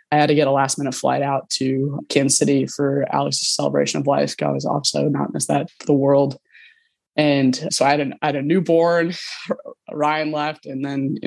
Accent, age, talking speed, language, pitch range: American, 20-39, 200 wpm, English, 140-150 Hz